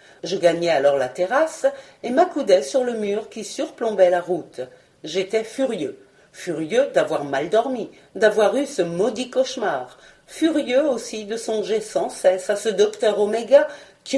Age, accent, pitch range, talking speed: 50-69, French, 185-270 Hz, 150 wpm